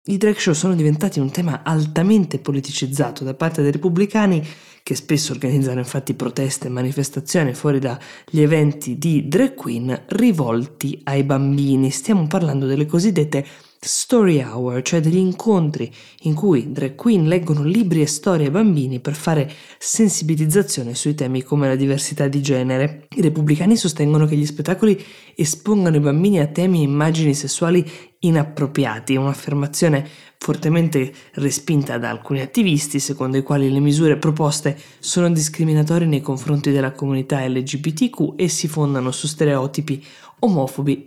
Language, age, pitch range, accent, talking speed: Italian, 20-39, 140-170 Hz, native, 145 wpm